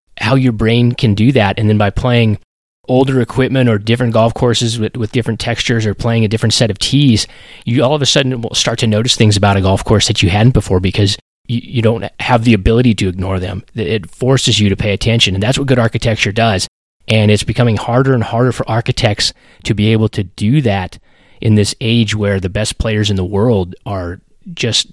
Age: 30-49